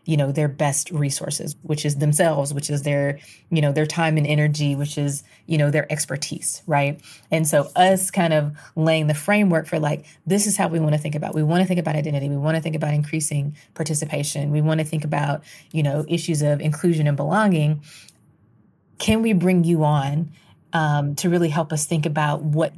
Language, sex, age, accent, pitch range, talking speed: English, female, 20-39, American, 150-170 Hz, 210 wpm